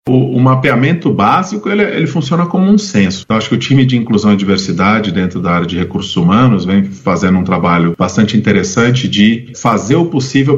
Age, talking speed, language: 40-59, 200 wpm, Portuguese